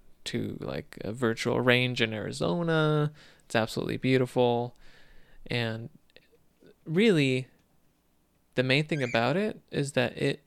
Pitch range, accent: 115-135 Hz, American